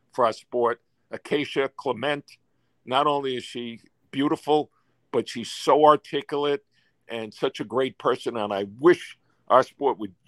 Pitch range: 120-150 Hz